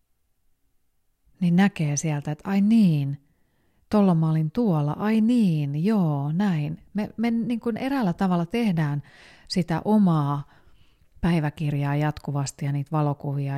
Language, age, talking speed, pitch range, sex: Finnish, 30-49, 110 wpm, 155-195 Hz, female